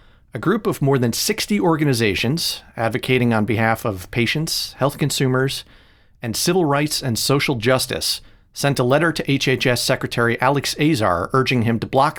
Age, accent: 40-59, American